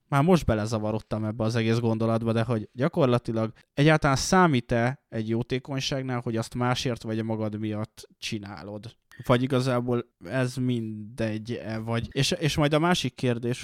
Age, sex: 20-39, male